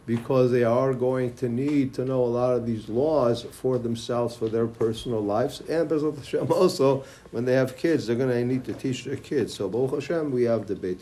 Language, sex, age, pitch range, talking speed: English, male, 50-69, 120-145 Hz, 205 wpm